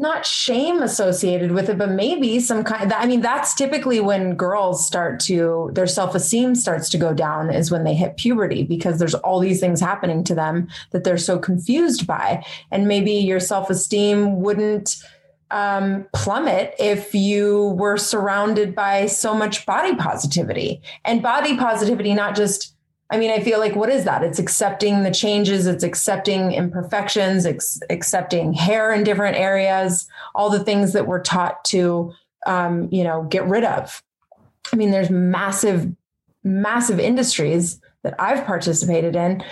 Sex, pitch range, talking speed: female, 185-215 Hz, 160 wpm